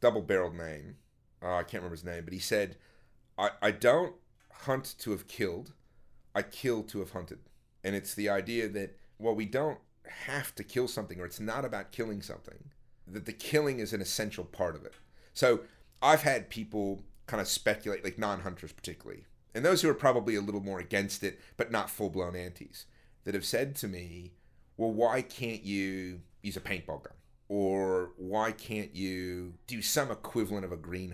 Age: 30-49